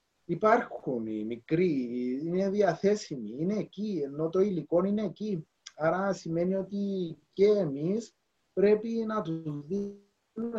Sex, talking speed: male, 120 wpm